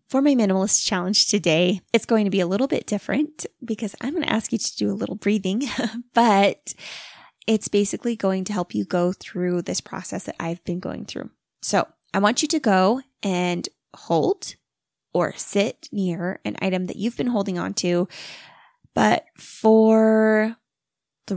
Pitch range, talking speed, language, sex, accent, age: 185-220 Hz, 170 wpm, English, female, American, 20-39